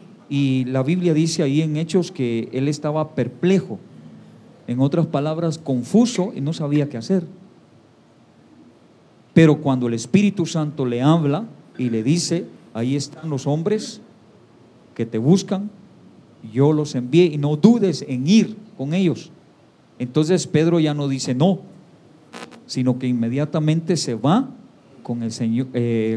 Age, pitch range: 50-69, 130-180 Hz